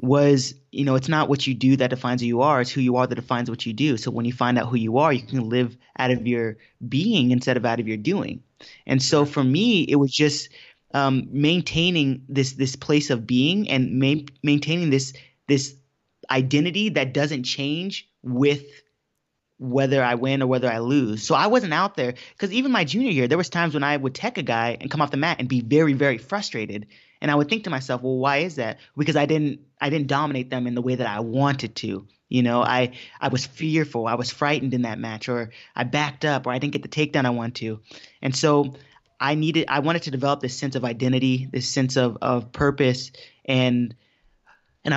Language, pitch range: English, 125-145 Hz